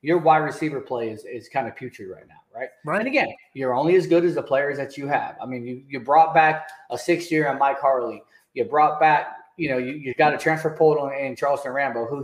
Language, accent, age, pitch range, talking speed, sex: English, American, 30-49, 140-175 Hz, 255 wpm, male